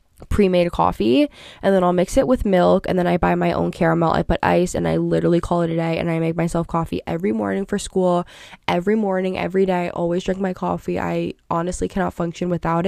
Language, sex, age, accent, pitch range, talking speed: English, female, 10-29, American, 170-195 Hz, 230 wpm